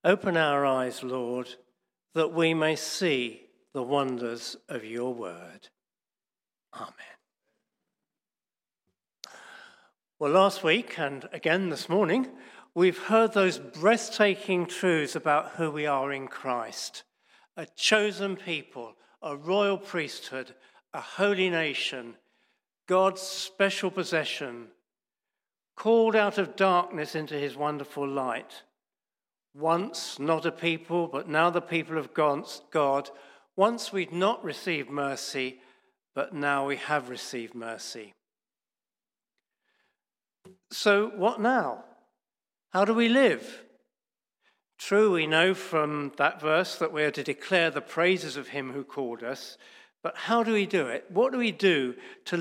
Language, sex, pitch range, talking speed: English, male, 140-195 Hz, 125 wpm